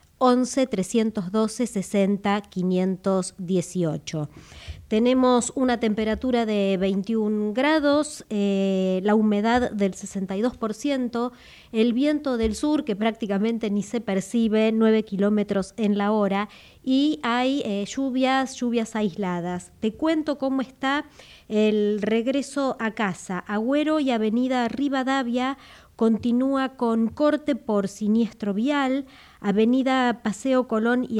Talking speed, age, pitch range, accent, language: 110 wpm, 30-49, 205-255 Hz, Argentinian, Italian